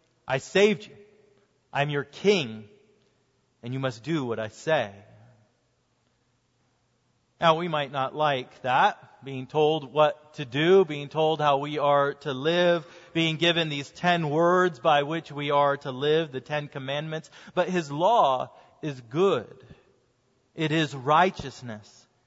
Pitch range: 135-205 Hz